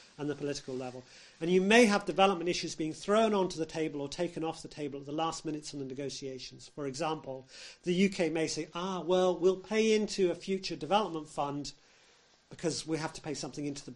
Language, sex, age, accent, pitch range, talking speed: Swedish, male, 40-59, British, 140-185 Hz, 215 wpm